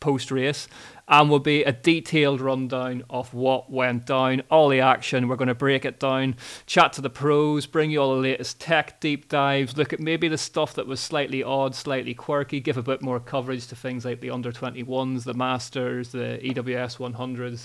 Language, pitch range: English, 125-140 Hz